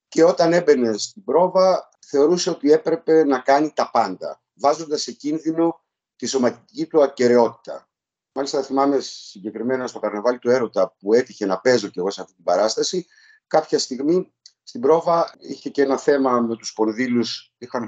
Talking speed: 160 wpm